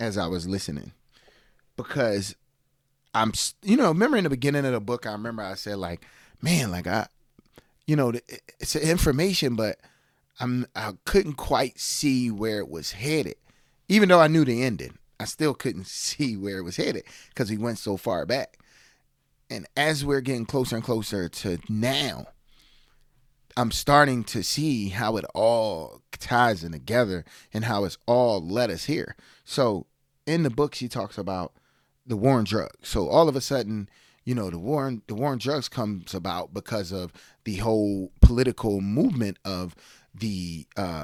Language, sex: English, male